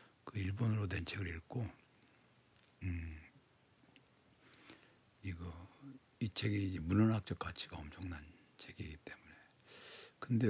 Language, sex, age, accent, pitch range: Korean, male, 60-79, native, 90-115 Hz